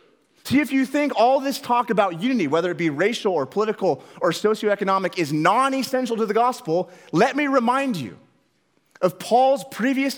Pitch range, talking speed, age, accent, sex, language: 185-265 Hz, 170 wpm, 30-49, American, male, English